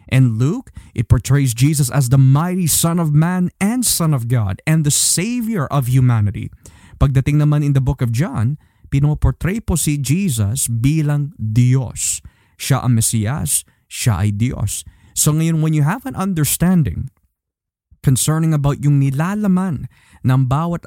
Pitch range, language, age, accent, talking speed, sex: 120-155 Hz, Filipino, 20-39, native, 150 wpm, male